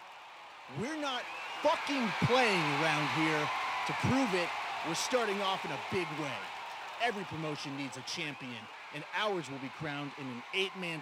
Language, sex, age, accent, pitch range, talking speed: English, male, 30-49, American, 140-200 Hz, 160 wpm